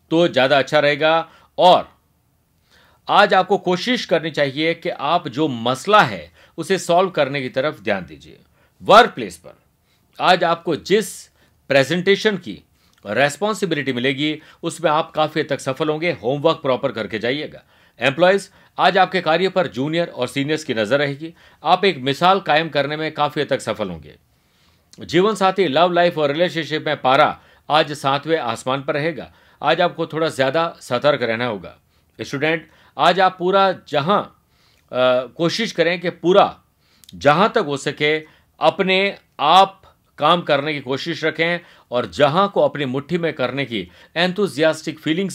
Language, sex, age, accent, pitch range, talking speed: Hindi, male, 50-69, native, 135-175 Hz, 150 wpm